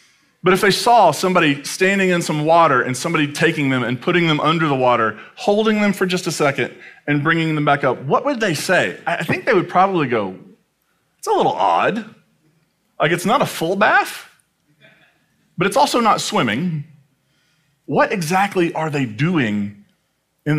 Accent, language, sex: American, English, male